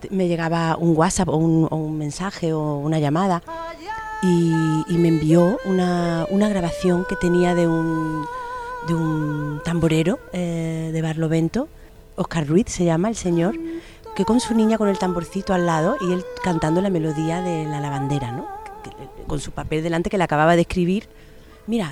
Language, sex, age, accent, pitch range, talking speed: Spanish, female, 30-49, Spanish, 160-205 Hz, 175 wpm